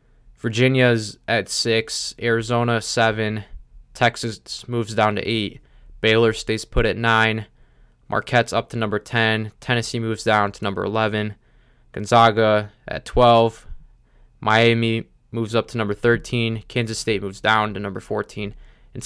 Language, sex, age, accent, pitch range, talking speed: English, male, 20-39, American, 105-120 Hz, 135 wpm